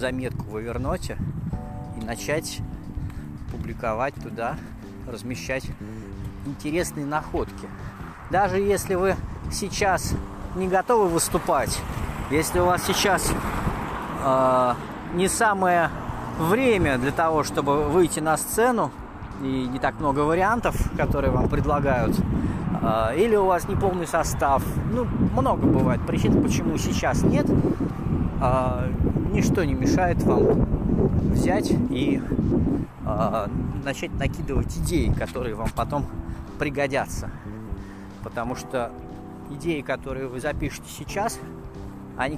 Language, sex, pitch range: Russian, male, 110-155 Hz